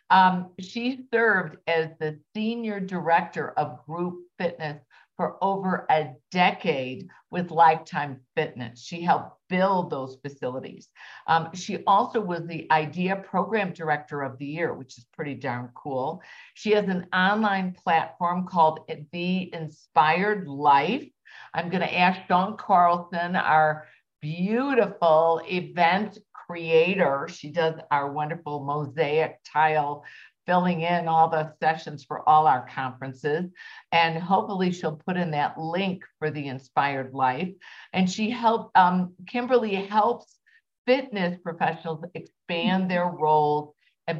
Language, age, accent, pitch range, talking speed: English, 50-69, American, 155-185 Hz, 130 wpm